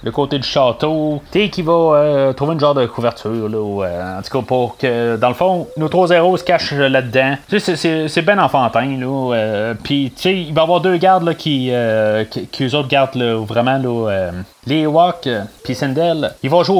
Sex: male